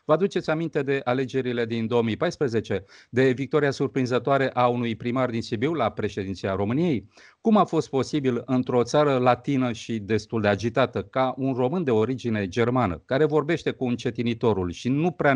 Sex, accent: male, native